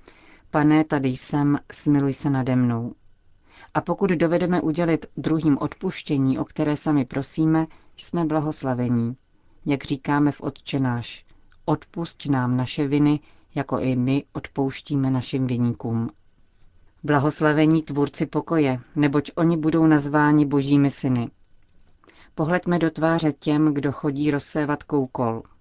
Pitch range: 130-155 Hz